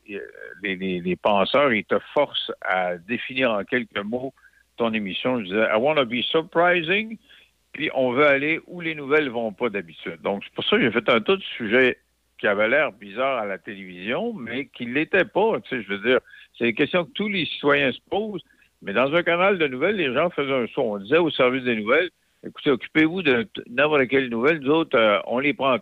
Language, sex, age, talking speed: French, male, 60-79, 220 wpm